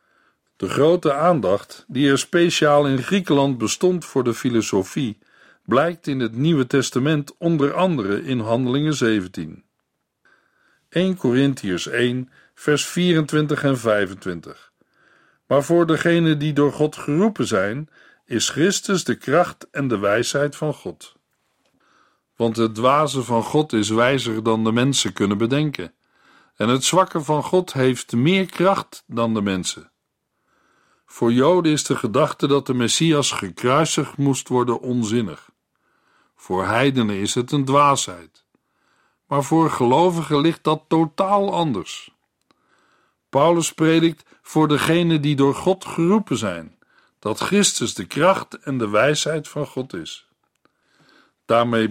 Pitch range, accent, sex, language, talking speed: 120-160 Hz, Dutch, male, Dutch, 130 wpm